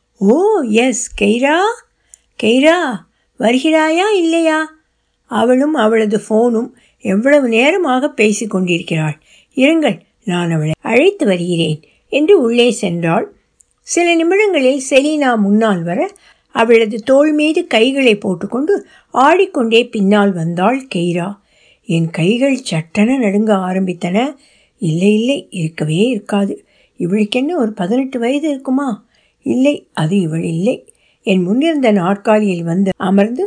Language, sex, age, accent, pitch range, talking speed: Tamil, female, 60-79, native, 200-280 Hz, 100 wpm